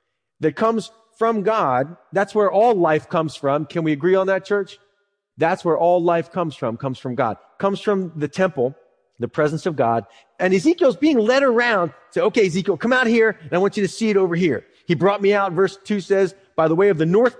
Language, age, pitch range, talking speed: English, 30-49, 145-195 Hz, 230 wpm